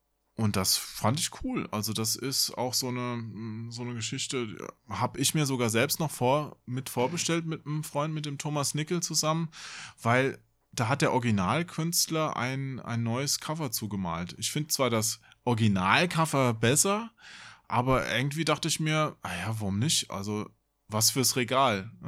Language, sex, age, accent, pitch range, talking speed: German, male, 20-39, German, 110-140 Hz, 155 wpm